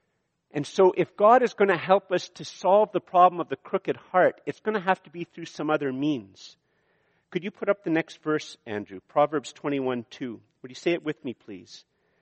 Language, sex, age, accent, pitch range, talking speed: English, male, 50-69, American, 125-170 Hz, 225 wpm